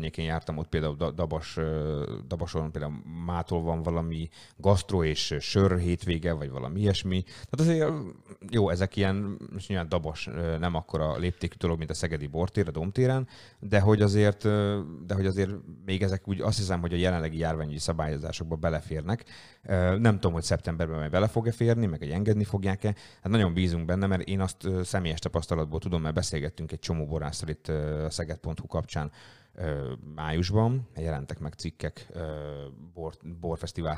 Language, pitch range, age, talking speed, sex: Hungarian, 80-95 Hz, 30-49, 150 wpm, male